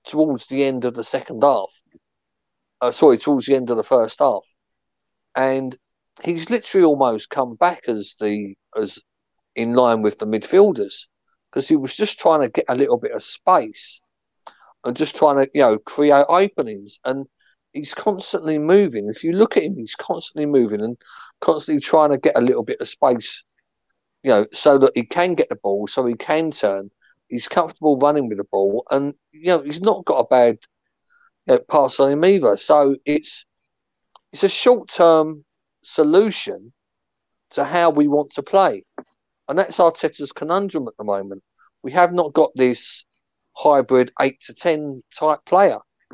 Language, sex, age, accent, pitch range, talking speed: English, male, 50-69, British, 125-175 Hz, 175 wpm